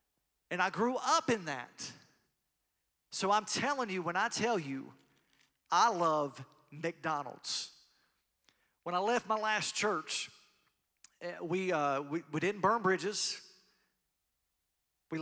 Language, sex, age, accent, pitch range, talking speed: English, male, 40-59, American, 155-200 Hz, 120 wpm